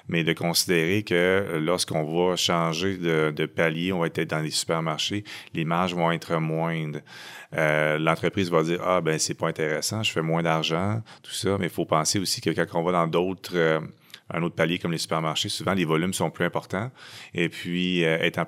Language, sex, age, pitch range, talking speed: English, male, 30-49, 80-90 Hz, 210 wpm